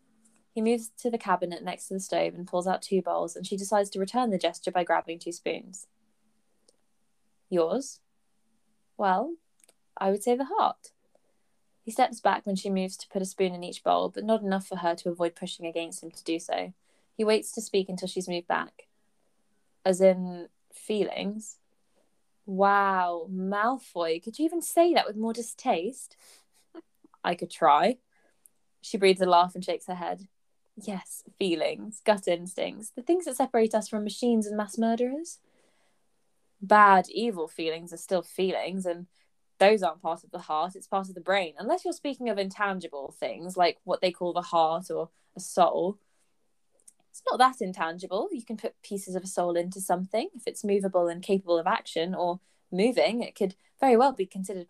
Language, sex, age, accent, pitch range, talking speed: English, female, 20-39, British, 180-225 Hz, 180 wpm